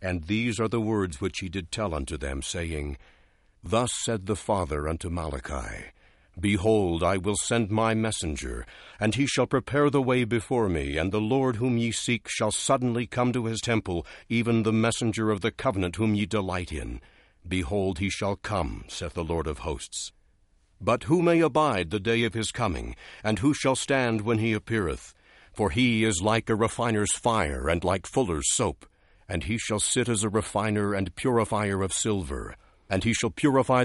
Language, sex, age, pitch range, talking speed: English, male, 60-79, 90-115 Hz, 185 wpm